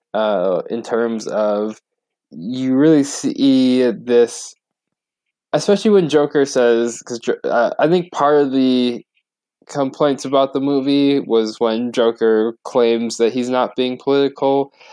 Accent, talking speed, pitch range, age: American, 130 wpm, 105-130 Hz, 20-39